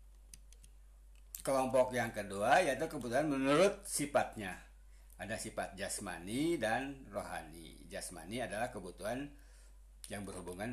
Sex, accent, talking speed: male, native, 95 wpm